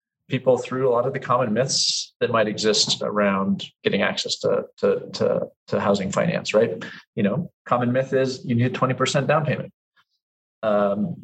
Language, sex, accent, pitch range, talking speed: English, male, American, 120-195 Hz, 175 wpm